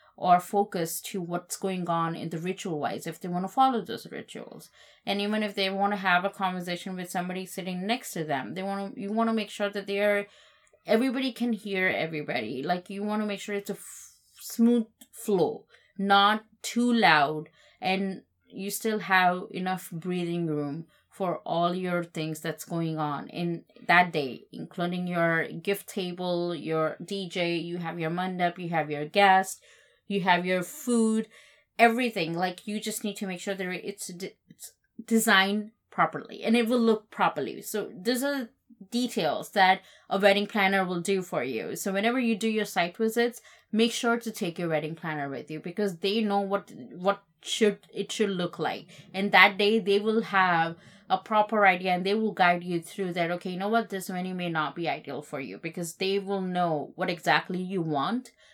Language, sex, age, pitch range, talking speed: English, female, 20-39, 175-210 Hz, 195 wpm